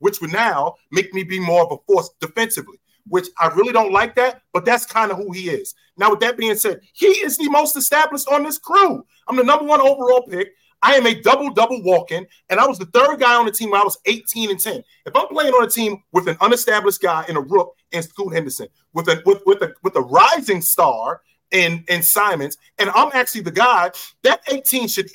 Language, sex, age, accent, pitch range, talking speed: English, male, 30-49, American, 185-280 Hz, 240 wpm